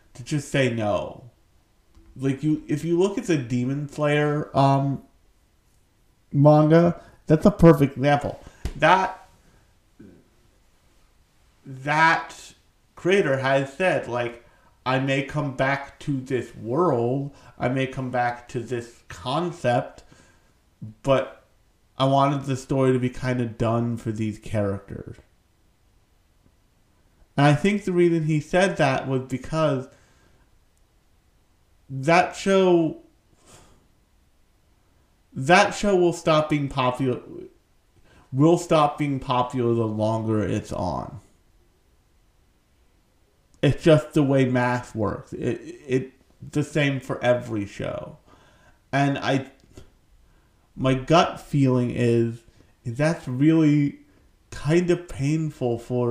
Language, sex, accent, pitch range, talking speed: English, male, American, 110-145 Hz, 110 wpm